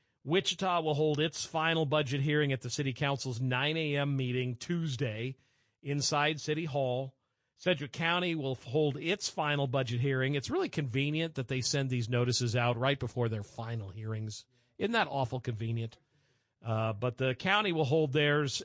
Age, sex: 50-69, male